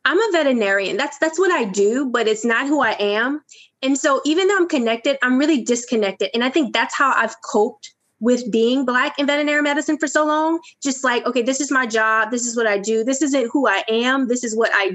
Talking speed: 240 wpm